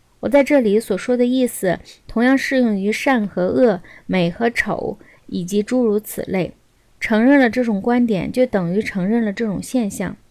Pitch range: 205-260 Hz